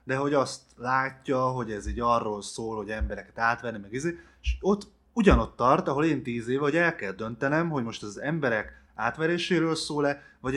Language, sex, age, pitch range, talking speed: Hungarian, male, 20-39, 105-135 Hz, 185 wpm